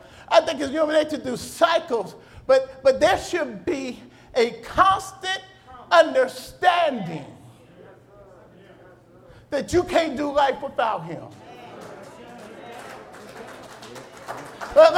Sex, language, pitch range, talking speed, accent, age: male, English, 265-335 Hz, 100 wpm, American, 40-59